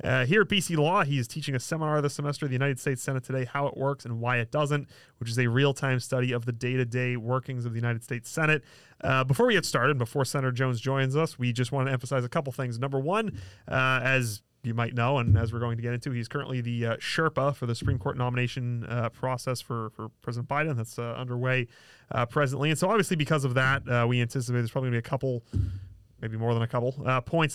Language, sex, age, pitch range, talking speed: English, male, 30-49, 120-145 Hz, 250 wpm